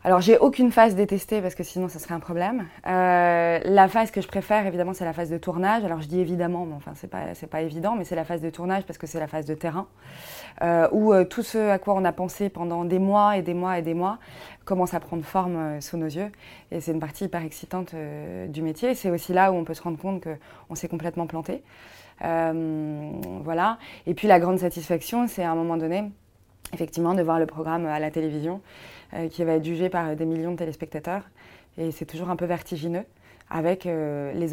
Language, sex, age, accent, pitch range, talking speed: French, female, 20-39, French, 160-185 Hz, 235 wpm